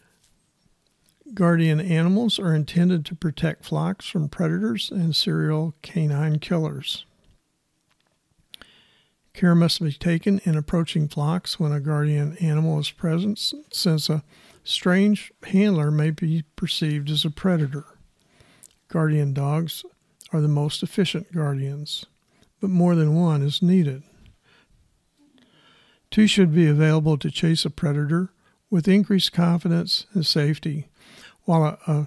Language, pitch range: English, 150-180 Hz